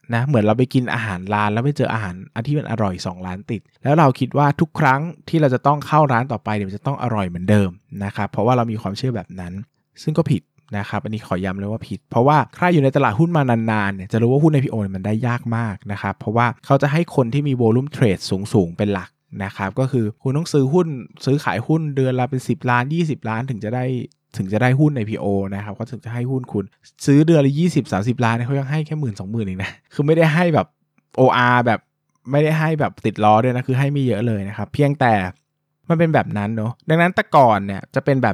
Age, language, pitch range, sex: 20-39, Thai, 105-140 Hz, male